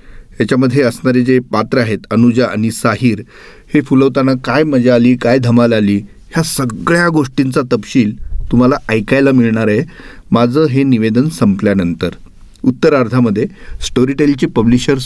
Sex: male